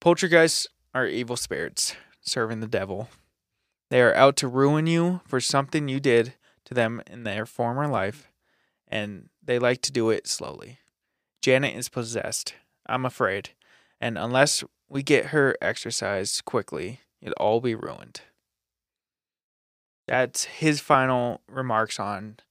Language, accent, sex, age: English, American, male, 20-39